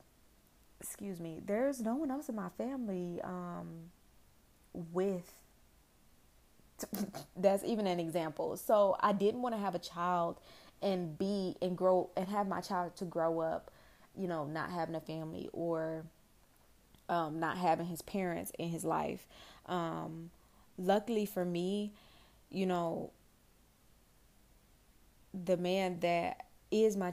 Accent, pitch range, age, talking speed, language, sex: American, 165-190 Hz, 20-39, 135 wpm, English, female